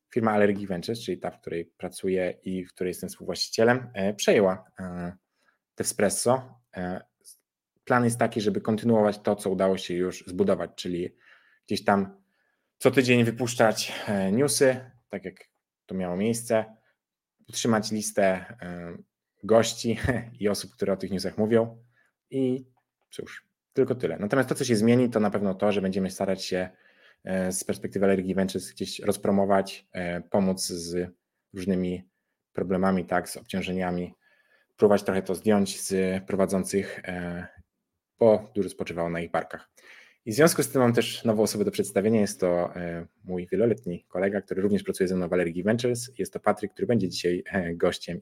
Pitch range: 90-115 Hz